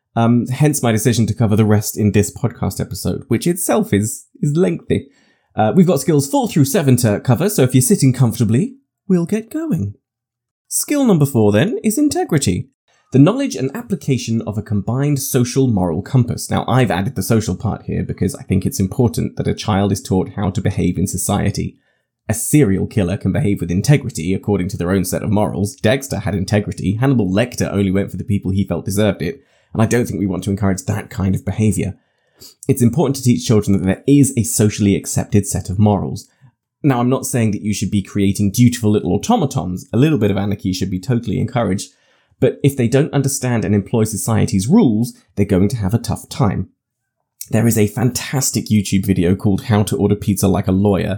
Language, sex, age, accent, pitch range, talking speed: English, male, 20-39, British, 100-130 Hz, 205 wpm